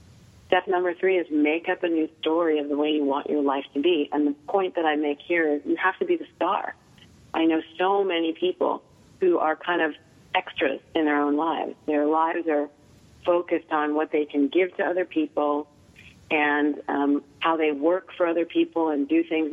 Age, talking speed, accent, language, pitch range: 40-59, 210 wpm, American, English, 145-175 Hz